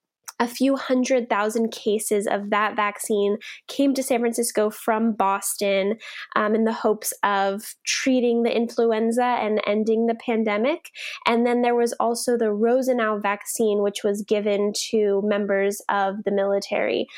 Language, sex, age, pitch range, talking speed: English, female, 10-29, 215-245 Hz, 145 wpm